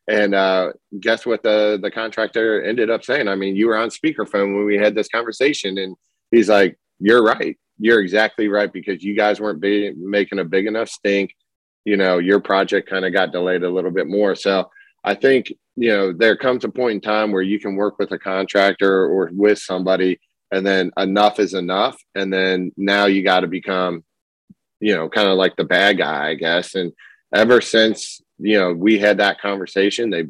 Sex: male